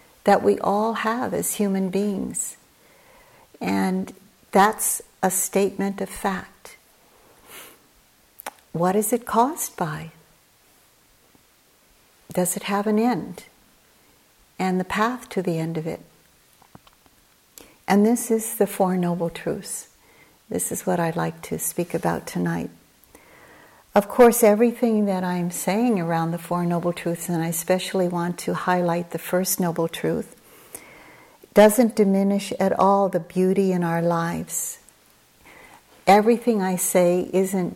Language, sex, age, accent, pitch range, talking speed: English, female, 60-79, American, 170-205 Hz, 130 wpm